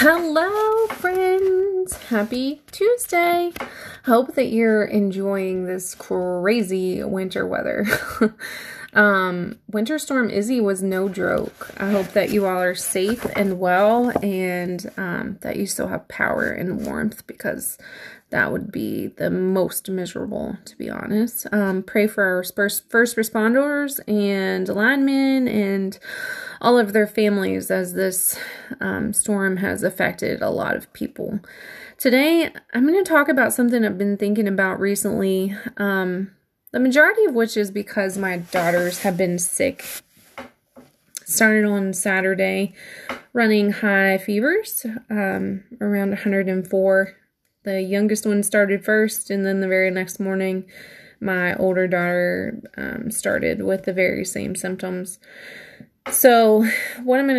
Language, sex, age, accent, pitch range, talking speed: English, female, 20-39, American, 190-240 Hz, 135 wpm